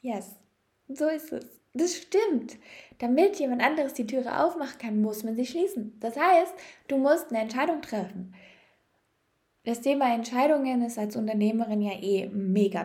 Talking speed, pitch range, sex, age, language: 155 wpm, 195-250 Hz, female, 20-39, German